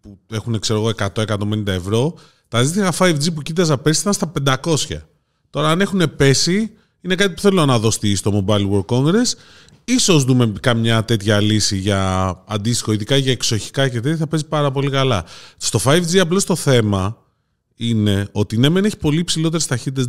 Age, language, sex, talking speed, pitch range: 20-39, Greek, male, 175 wpm, 105-150 Hz